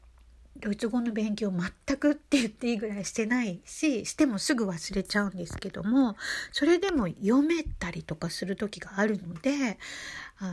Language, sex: Japanese, female